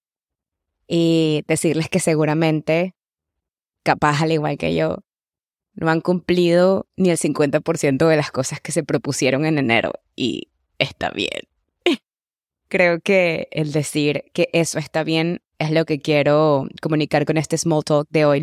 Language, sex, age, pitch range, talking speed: English, female, 20-39, 140-160 Hz, 145 wpm